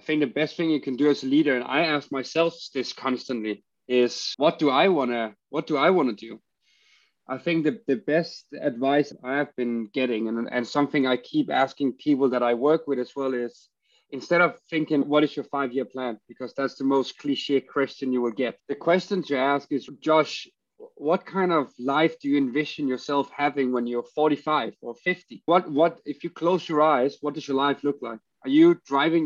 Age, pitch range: 30-49, 135-165 Hz